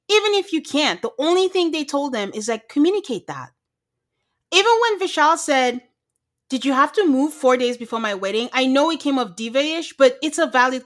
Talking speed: 215 wpm